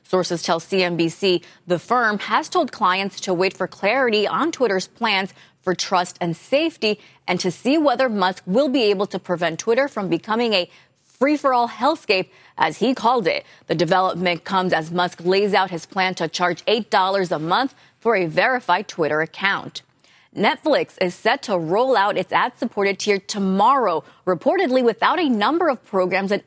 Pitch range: 180-250 Hz